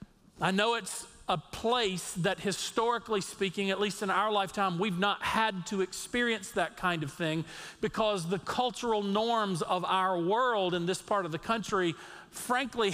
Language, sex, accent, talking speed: English, male, American, 165 wpm